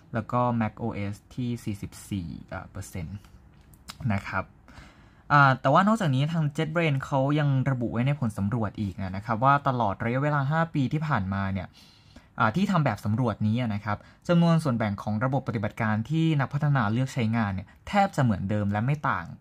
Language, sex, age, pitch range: Thai, male, 20-39, 105-140 Hz